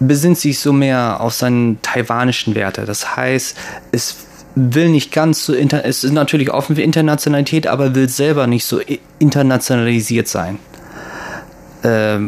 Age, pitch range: 20-39, 115-140 Hz